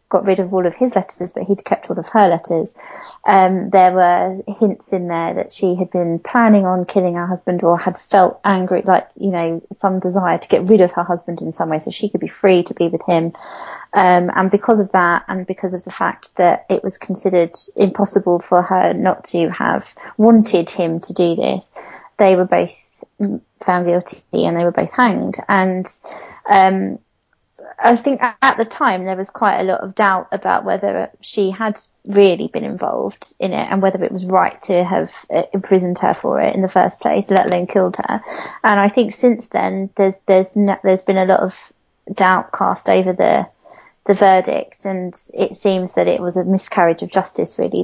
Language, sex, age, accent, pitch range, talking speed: English, female, 20-39, British, 180-200 Hz, 205 wpm